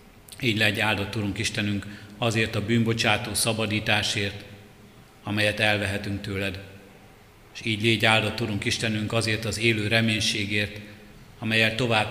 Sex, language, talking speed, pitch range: male, Hungarian, 120 wpm, 105-115 Hz